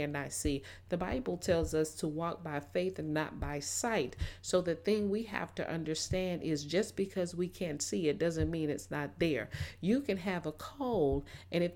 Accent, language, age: American, English, 40-59